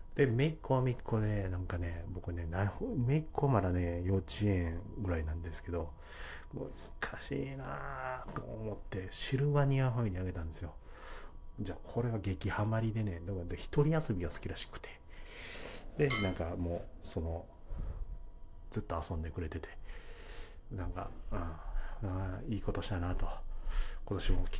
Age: 40-59